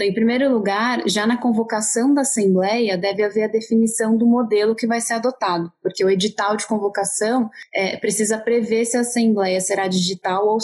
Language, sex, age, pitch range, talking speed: Portuguese, female, 20-39, 195-225 Hz, 185 wpm